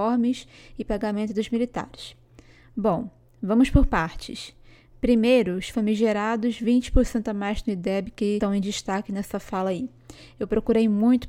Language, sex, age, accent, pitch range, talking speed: Portuguese, female, 20-39, Brazilian, 205-235 Hz, 140 wpm